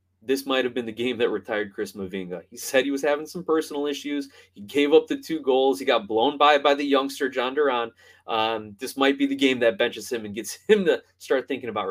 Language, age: English, 20-39